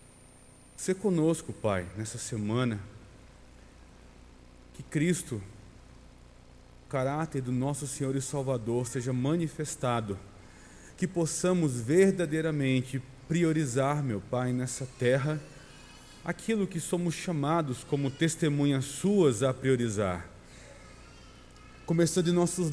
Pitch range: 120-160 Hz